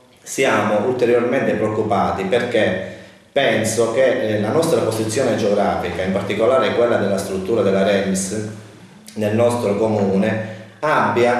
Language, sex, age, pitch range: Italian, male, 30-49, 100-120 Hz